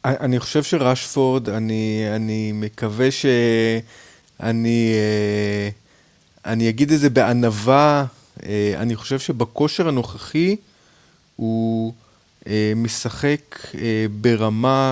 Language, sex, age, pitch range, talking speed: Hebrew, male, 30-49, 115-145 Hz, 75 wpm